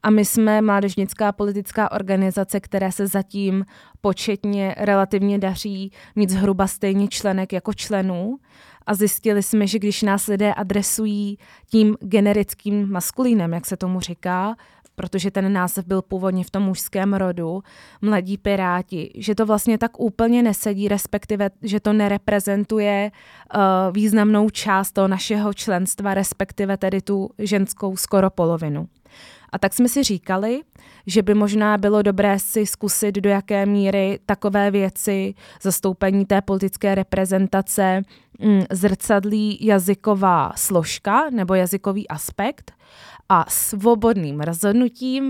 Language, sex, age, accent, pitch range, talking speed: Czech, female, 20-39, native, 190-210 Hz, 125 wpm